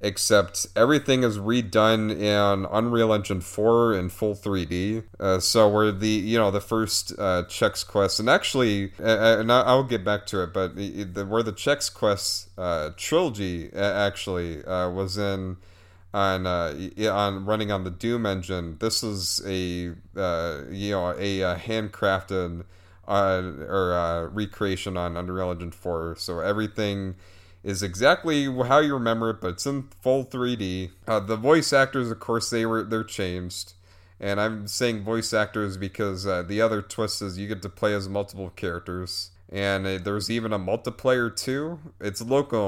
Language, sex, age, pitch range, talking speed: English, male, 30-49, 95-110 Hz, 165 wpm